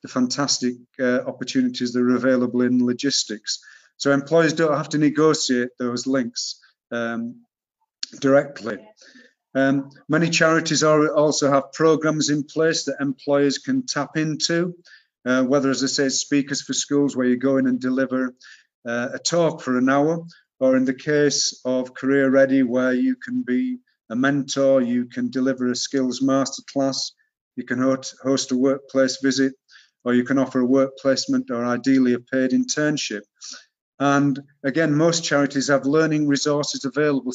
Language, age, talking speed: English, 40-59, 155 wpm